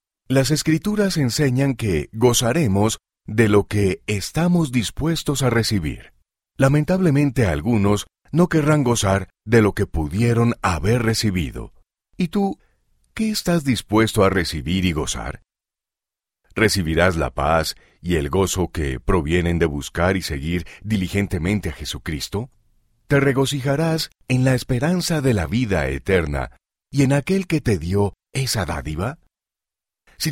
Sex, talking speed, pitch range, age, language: male, 130 wpm, 90-135 Hz, 40-59, Spanish